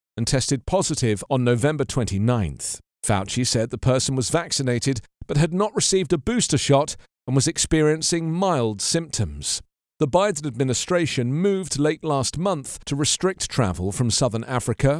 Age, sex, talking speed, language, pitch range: 40-59, male, 150 wpm, English, 120-165 Hz